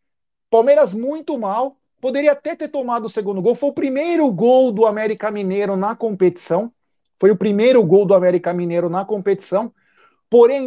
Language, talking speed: Portuguese, 165 wpm